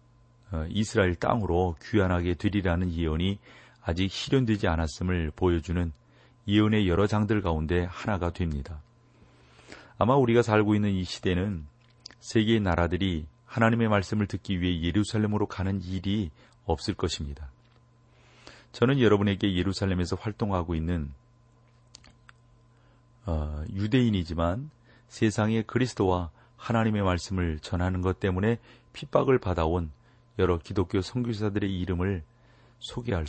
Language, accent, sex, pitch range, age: Korean, native, male, 85-115 Hz, 40-59